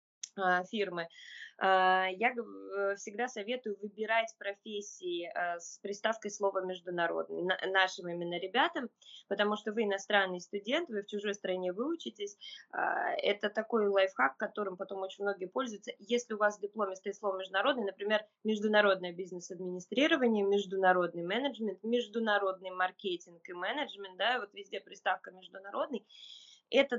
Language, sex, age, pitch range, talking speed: Russian, female, 20-39, 190-230 Hz, 120 wpm